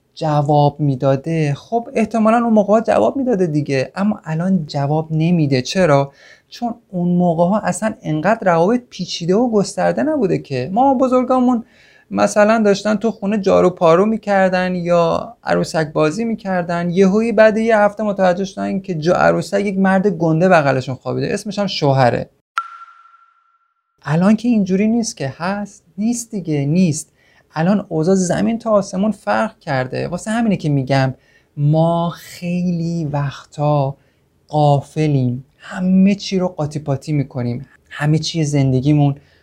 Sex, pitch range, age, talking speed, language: male, 145-210 Hz, 30-49, 140 wpm, Persian